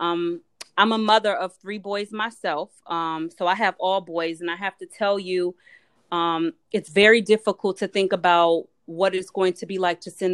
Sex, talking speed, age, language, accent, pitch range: female, 205 wpm, 30-49, English, American, 165-190 Hz